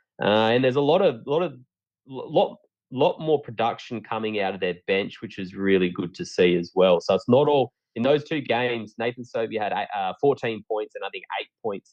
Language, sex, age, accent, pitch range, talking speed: English, male, 20-39, Australian, 95-120 Hz, 220 wpm